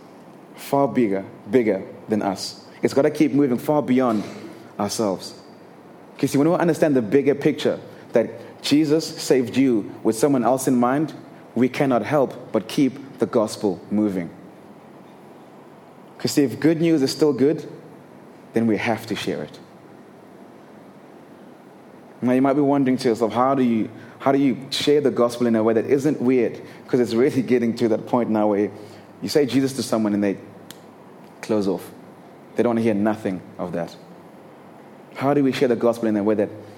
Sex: male